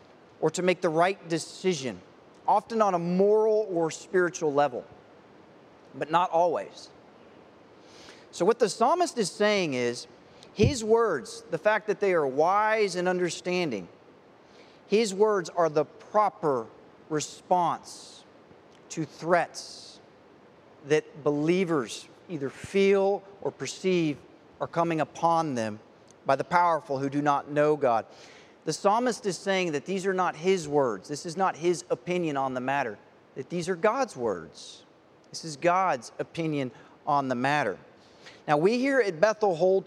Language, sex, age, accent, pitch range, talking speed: English, male, 40-59, American, 150-195 Hz, 145 wpm